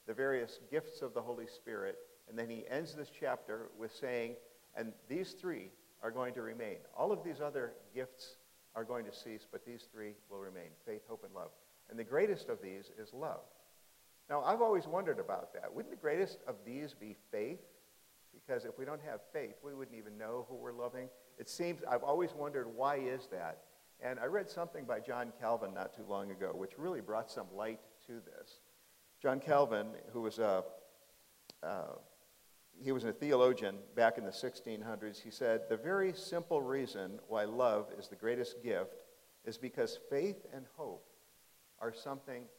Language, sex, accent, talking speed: English, male, American, 185 wpm